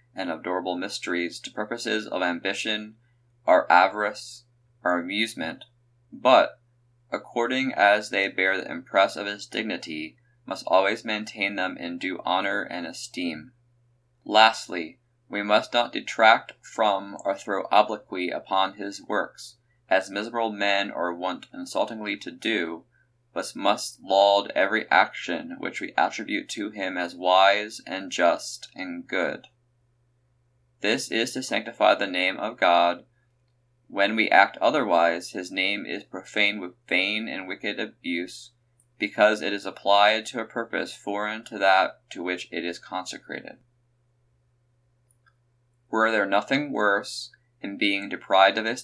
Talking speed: 135 wpm